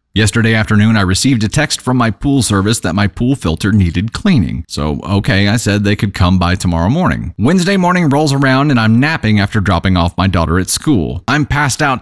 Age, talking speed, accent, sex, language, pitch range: 30-49, 215 wpm, American, male, English, 95-130 Hz